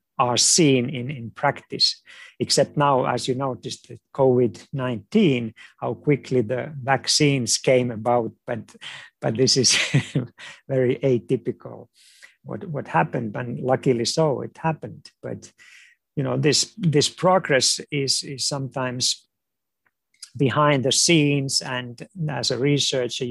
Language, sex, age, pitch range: English, male, 50-69, 125-150 Hz